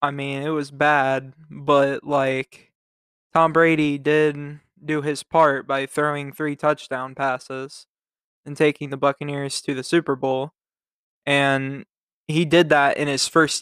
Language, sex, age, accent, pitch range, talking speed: English, male, 20-39, American, 140-155 Hz, 145 wpm